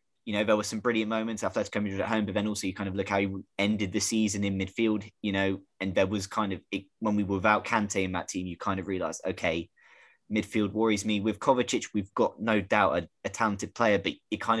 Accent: British